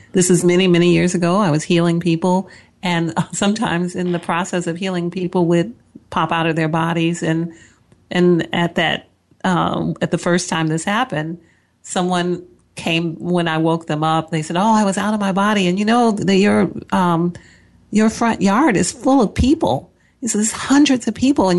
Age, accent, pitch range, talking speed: 40-59, American, 165-195 Hz, 195 wpm